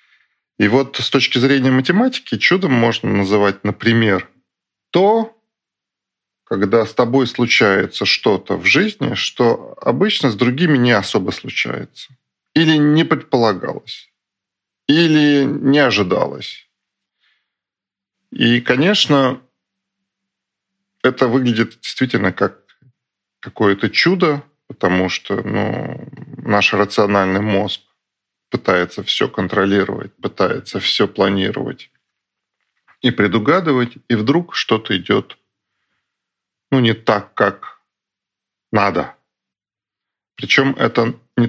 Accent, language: native, Russian